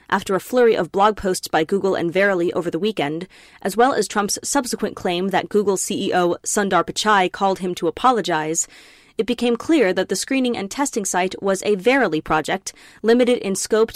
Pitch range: 190-225 Hz